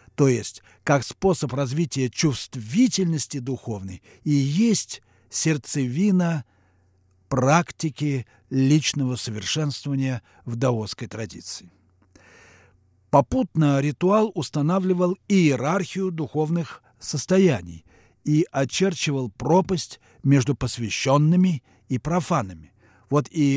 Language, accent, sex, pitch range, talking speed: Russian, native, male, 120-160 Hz, 80 wpm